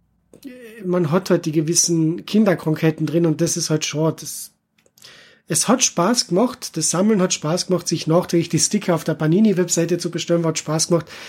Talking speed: 175 wpm